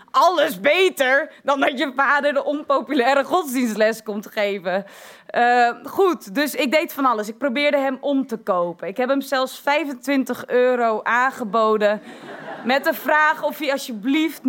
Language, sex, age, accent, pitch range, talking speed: Dutch, female, 20-39, Dutch, 200-265 Hz, 155 wpm